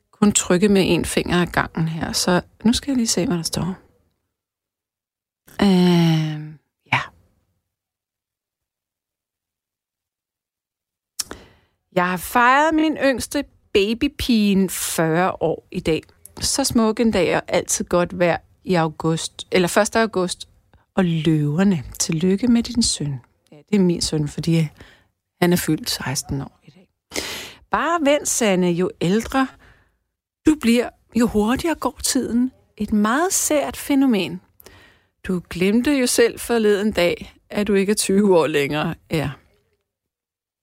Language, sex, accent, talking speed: Danish, female, native, 130 wpm